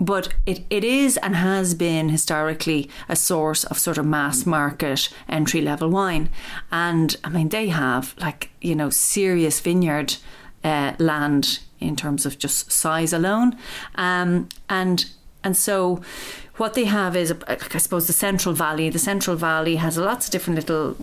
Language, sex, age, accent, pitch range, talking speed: English, female, 40-59, Irish, 155-185 Hz, 160 wpm